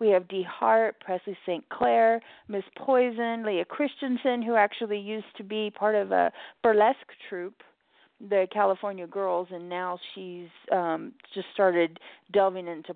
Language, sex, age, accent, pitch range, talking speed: English, female, 30-49, American, 190-235 Hz, 150 wpm